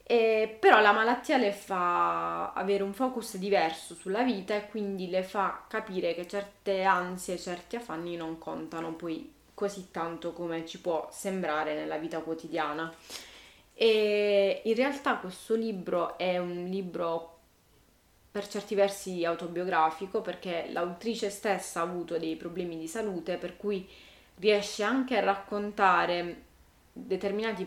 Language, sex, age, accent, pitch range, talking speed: Italian, female, 20-39, native, 170-205 Hz, 135 wpm